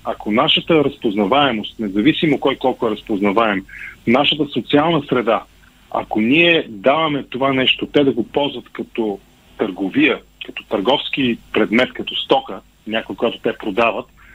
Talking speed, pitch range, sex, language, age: 130 wpm, 110-145 Hz, male, Bulgarian, 40-59